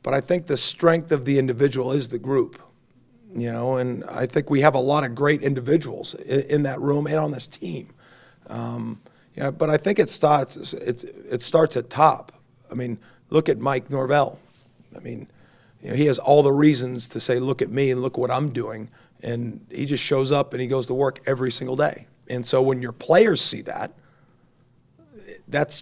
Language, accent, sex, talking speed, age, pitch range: English, American, male, 210 wpm, 40-59, 125-150 Hz